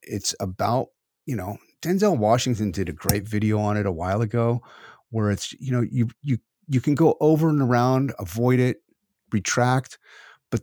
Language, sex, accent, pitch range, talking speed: English, male, American, 100-125 Hz, 175 wpm